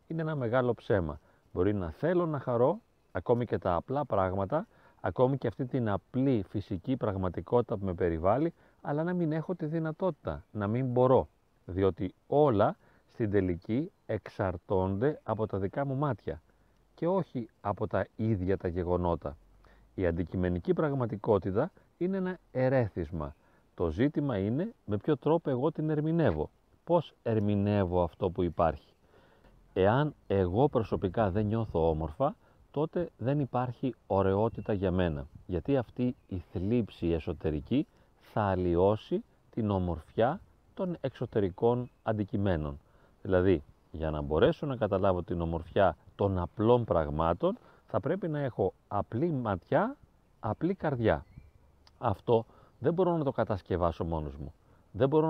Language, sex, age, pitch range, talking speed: Greek, male, 40-59, 95-135 Hz, 135 wpm